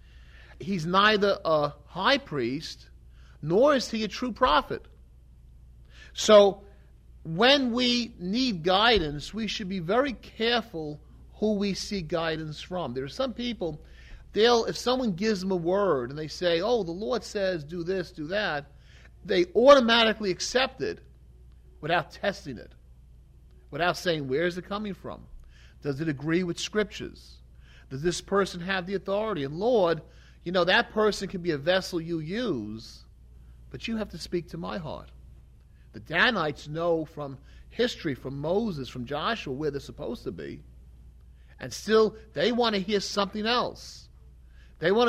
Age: 40-59